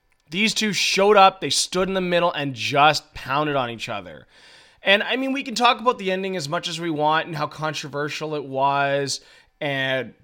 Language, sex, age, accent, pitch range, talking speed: English, male, 20-39, American, 145-195 Hz, 205 wpm